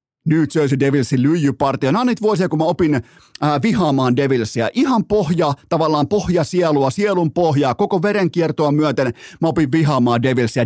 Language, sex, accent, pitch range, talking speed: Finnish, male, native, 125-160 Hz, 160 wpm